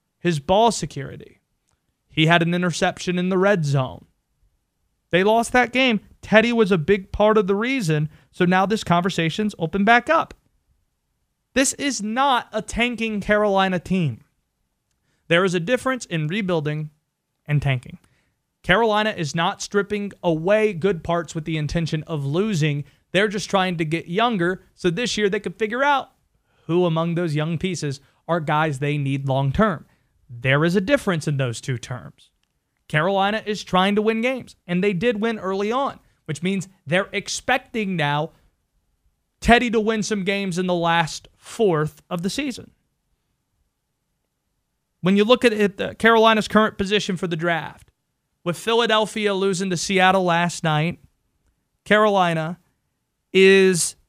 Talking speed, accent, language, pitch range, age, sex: 155 wpm, American, English, 160-210 Hz, 30-49, male